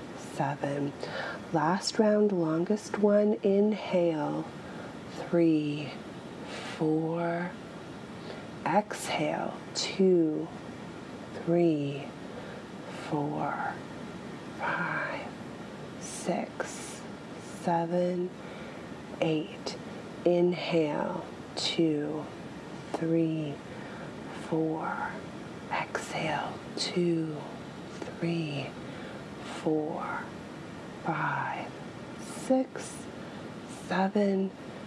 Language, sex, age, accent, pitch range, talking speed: English, female, 30-49, American, 160-205 Hz, 45 wpm